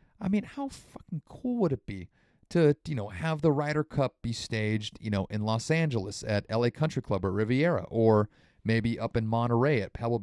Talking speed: 205 wpm